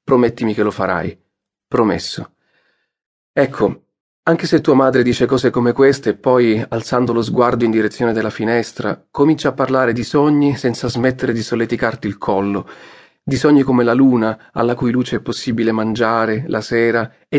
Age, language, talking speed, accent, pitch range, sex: 40-59, Italian, 165 wpm, native, 115-135 Hz, male